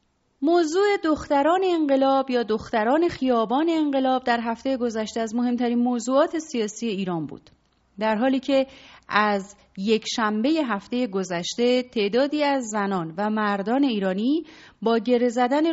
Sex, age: female, 30-49